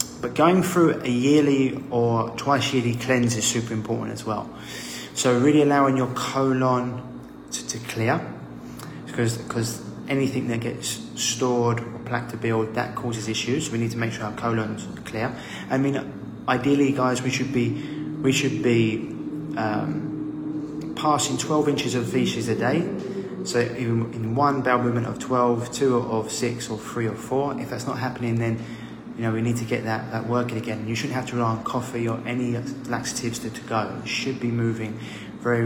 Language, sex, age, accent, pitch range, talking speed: English, male, 20-39, British, 115-130 Hz, 185 wpm